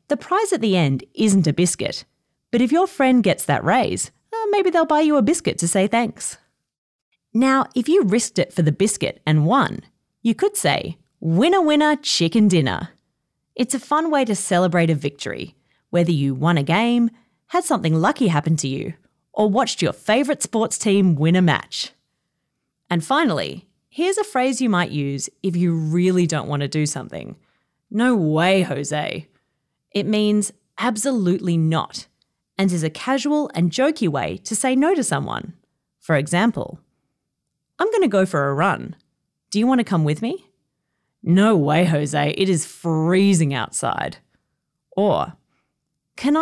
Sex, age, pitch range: female, 30-49, 165-250 Hz